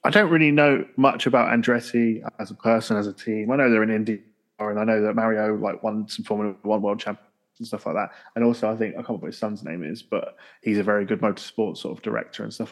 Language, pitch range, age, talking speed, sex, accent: English, 110-120 Hz, 20-39, 270 wpm, male, British